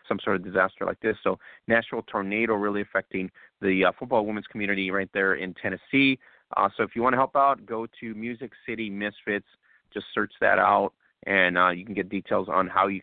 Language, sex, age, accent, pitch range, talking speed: English, male, 30-49, American, 100-125 Hz, 210 wpm